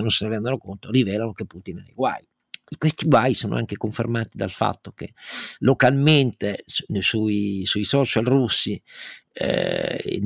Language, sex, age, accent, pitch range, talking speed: Italian, male, 50-69, native, 105-130 Hz, 150 wpm